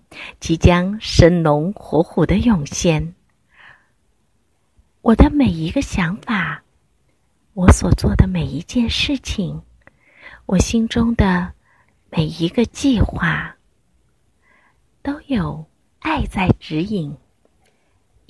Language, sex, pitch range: Chinese, female, 125-185 Hz